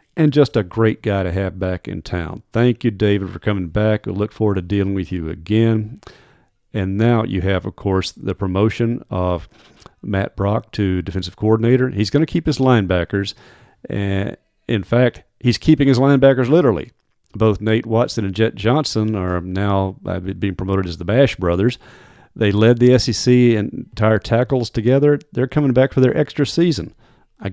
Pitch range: 95-120 Hz